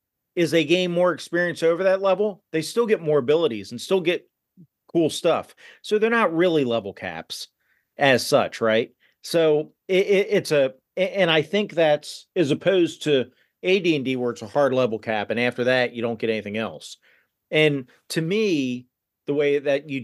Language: English